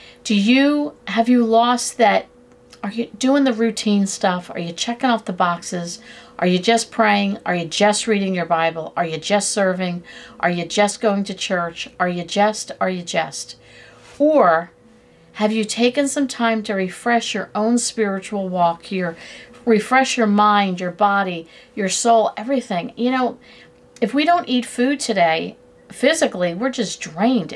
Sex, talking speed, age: female, 170 wpm, 50-69